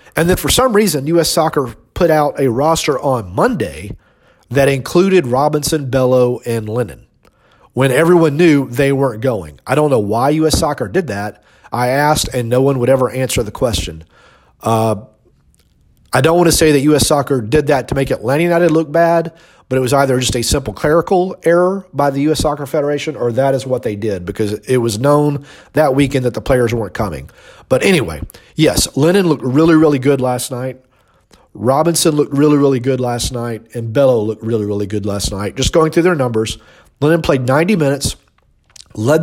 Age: 40-59